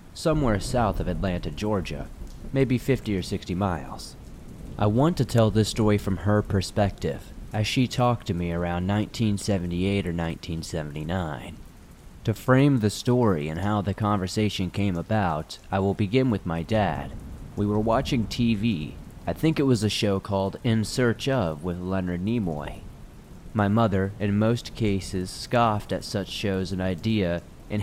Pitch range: 90-115 Hz